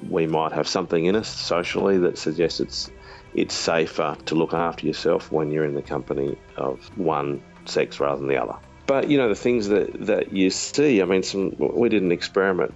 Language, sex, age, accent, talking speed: English, male, 40-59, Australian, 205 wpm